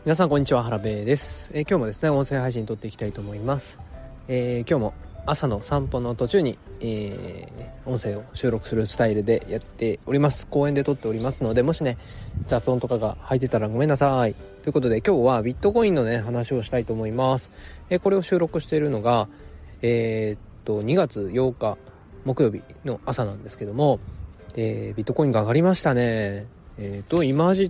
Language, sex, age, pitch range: Japanese, male, 20-39, 110-135 Hz